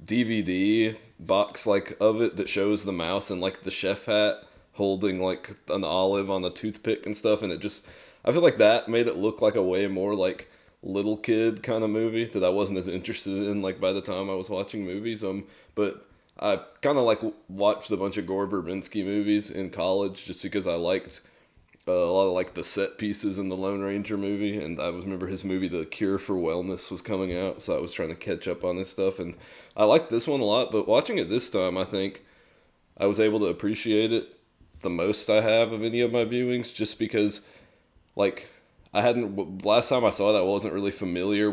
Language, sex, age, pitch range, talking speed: English, male, 20-39, 95-105 Hz, 225 wpm